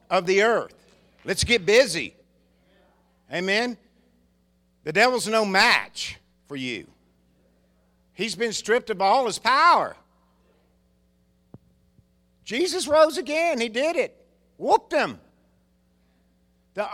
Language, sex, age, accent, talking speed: English, male, 50-69, American, 105 wpm